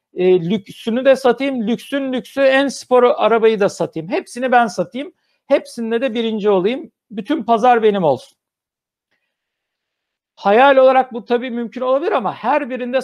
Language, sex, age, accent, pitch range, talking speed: Turkish, male, 60-79, native, 205-255 Hz, 145 wpm